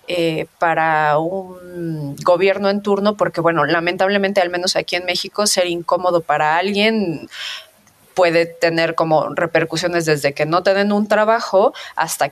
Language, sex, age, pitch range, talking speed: Spanish, female, 30-49, 170-205 Hz, 145 wpm